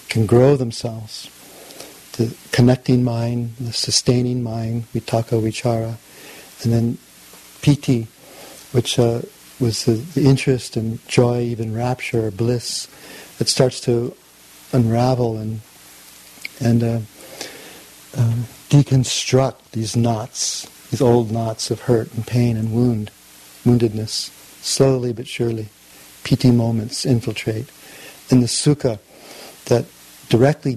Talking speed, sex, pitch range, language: 115 wpm, male, 110-125 Hz, English